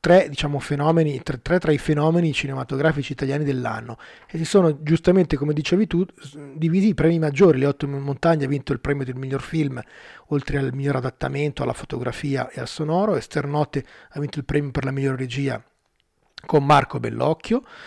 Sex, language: male, Italian